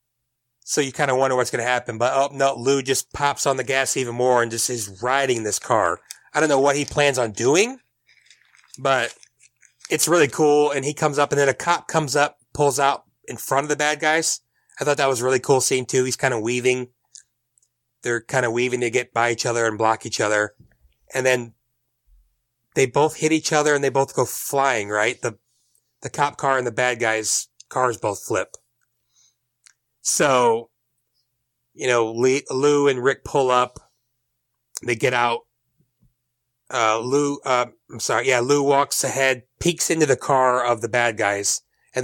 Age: 30-49